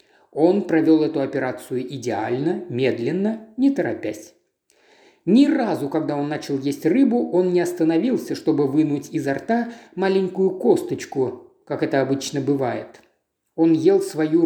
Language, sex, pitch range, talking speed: Russian, male, 150-230 Hz, 130 wpm